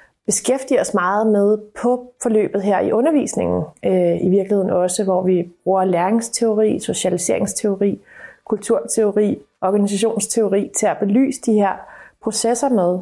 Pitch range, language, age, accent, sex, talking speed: 195-235 Hz, Danish, 30-49, native, female, 125 wpm